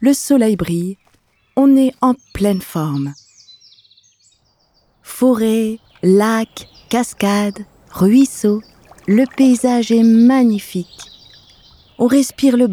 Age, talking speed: 40-59, 90 wpm